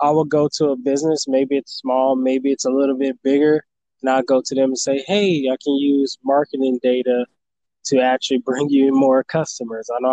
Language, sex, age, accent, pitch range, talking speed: English, male, 20-39, American, 125-140 Hz, 215 wpm